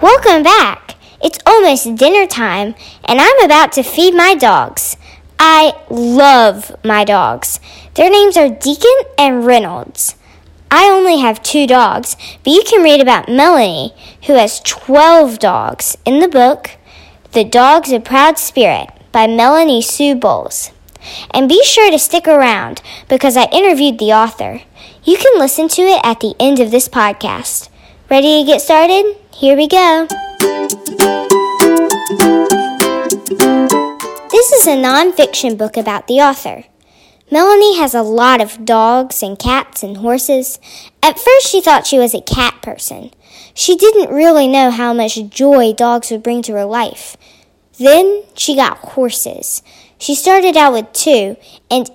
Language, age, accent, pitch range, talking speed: English, 10-29, American, 230-320 Hz, 150 wpm